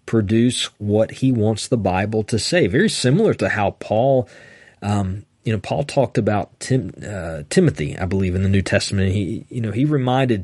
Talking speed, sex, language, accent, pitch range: 185 wpm, male, English, American, 100-130 Hz